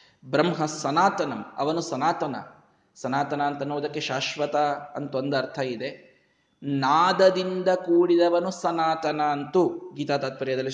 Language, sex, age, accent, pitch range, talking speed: Kannada, male, 20-39, native, 145-180 Hz, 95 wpm